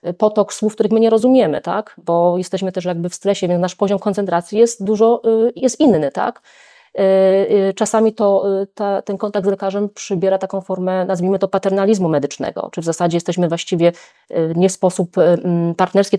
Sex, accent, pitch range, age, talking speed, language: female, native, 160-195 Hz, 20-39, 165 wpm, Polish